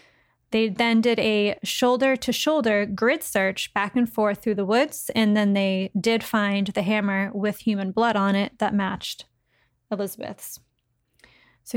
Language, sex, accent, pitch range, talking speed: English, female, American, 205-235 Hz, 150 wpm